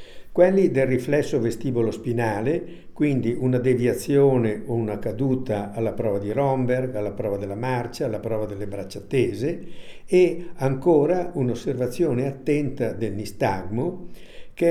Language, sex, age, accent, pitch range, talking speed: Italian, male, 60-79, native, 120-155 Hz, 120 wpm